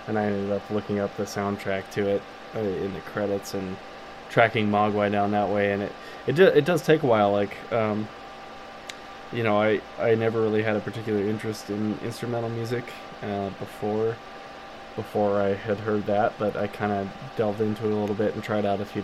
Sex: male